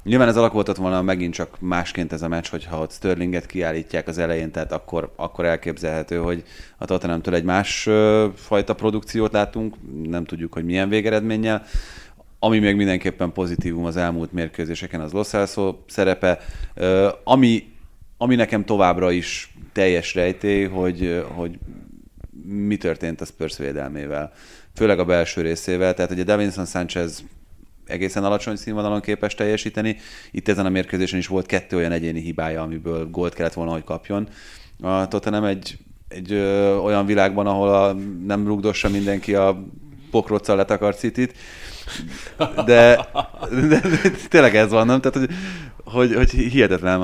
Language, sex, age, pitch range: Hungarian, male, 30-49, 85-105 Hz